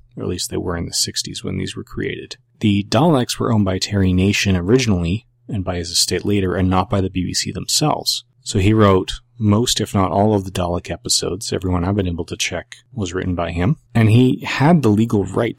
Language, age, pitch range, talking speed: English, 30-49, 90-110 Hz, 225 wpm